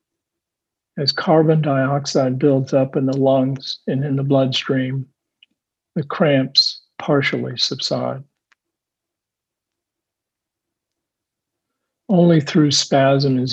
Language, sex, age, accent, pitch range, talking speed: English, male, 50-69, American, 135-150 Hz, 90 wpm